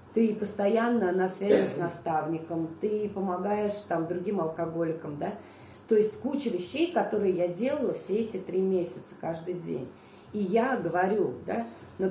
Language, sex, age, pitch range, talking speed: Russian, female, 20-39, 160-190 Hz, 150 wpm